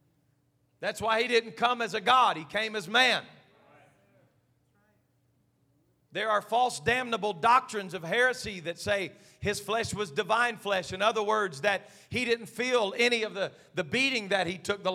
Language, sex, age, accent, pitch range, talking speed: English, male, 40-59, American, 210-295 Hz, 170 wpm